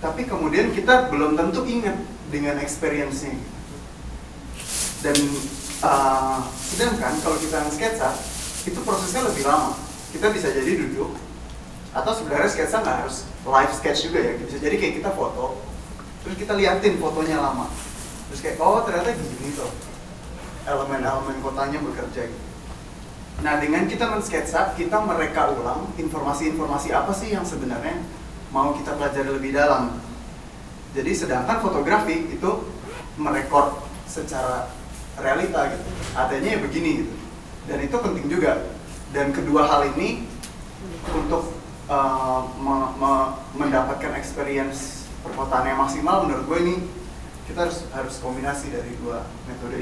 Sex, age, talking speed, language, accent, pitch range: male, 20-39, 130 wpm, Indonesian, native, 130-165 Hz